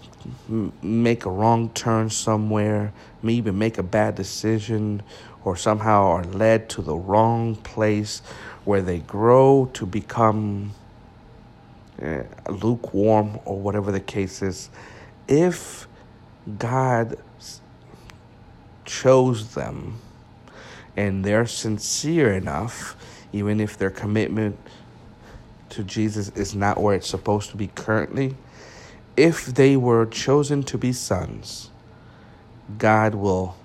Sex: male